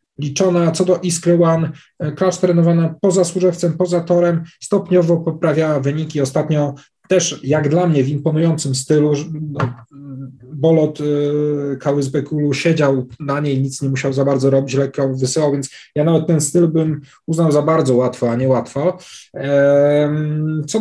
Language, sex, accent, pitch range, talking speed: Polish, male, native, 140-165 Hz, 145 wpm